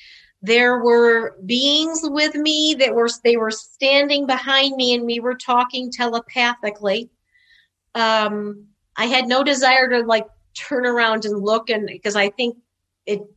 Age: 40-59